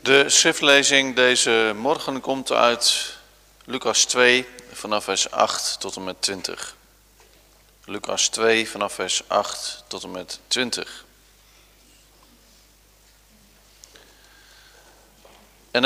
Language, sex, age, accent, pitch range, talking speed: Dutch, male, 40-59, Dutch, 120-155 Hz, 95 wpm